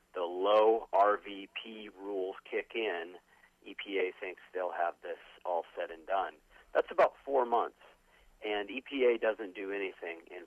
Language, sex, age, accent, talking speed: English, male, 40-59, American, 145 wpm